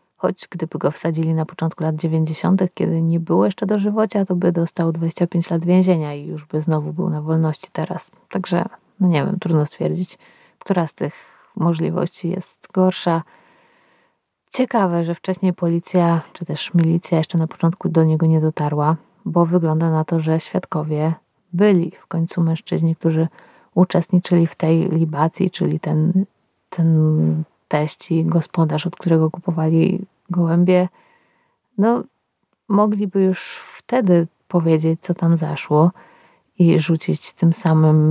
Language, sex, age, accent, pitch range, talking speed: Polish, female, 30-49, native, 160-185 Hz, 140 wpm